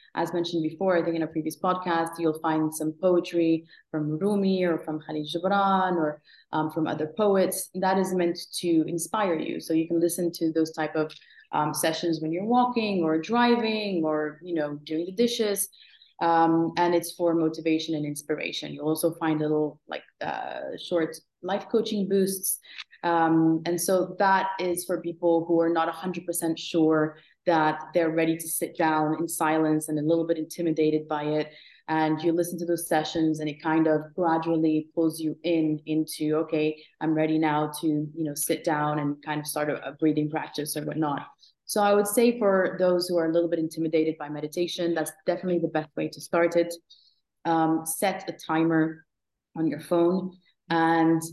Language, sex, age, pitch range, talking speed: English, female, 30-49, 155-175 Hz, 185 wpm